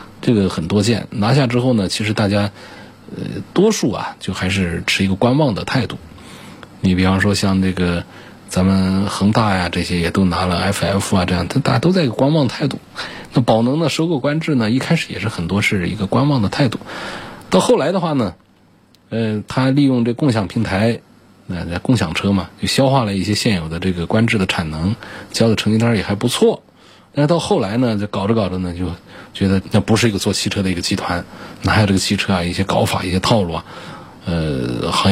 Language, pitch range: Chinese, 95-130 Hz